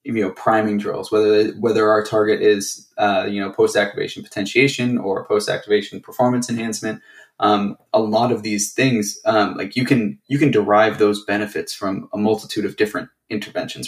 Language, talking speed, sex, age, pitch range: English, 175 wpm, male, 10-29, 100-110 Hz